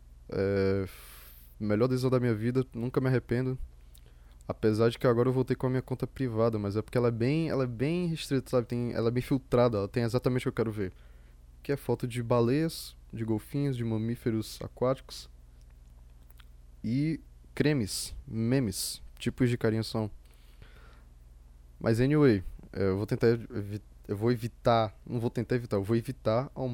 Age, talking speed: 10-29, 175 wpm